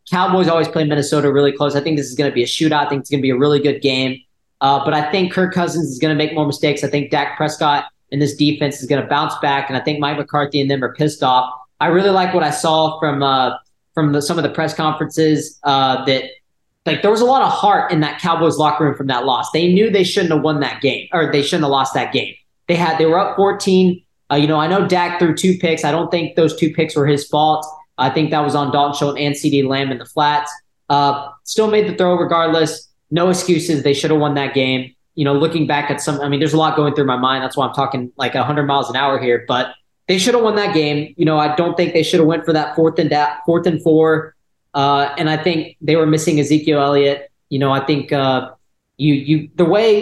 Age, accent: 20-39, American